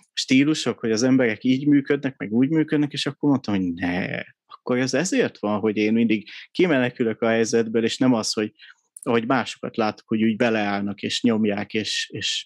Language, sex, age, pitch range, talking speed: Hungarian, male, 30-49, 110-135 Hz, 185 wpm